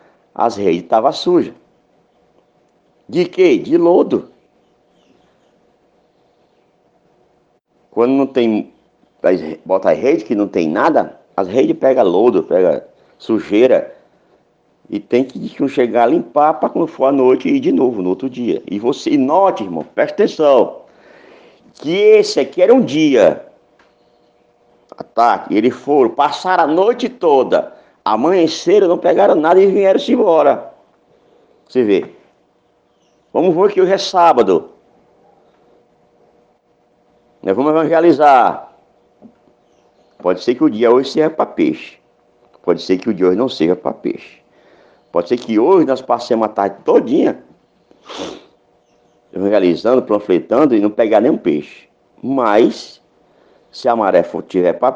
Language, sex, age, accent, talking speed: Portuguese, male, 60-79, Brazilian, 130 wpm